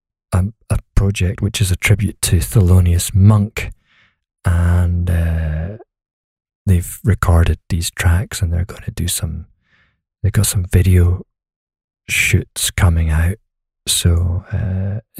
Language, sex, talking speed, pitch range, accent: English, male, 120 wpm, 90-110 Hz, British